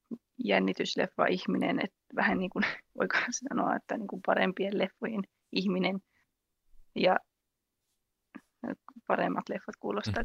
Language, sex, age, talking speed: Finnish, female, 20-39, 100 wpm